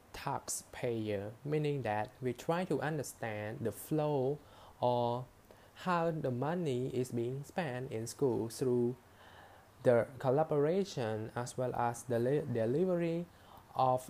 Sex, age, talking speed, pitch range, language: male, 10-29, 115 wpm, 110-140 Hz, English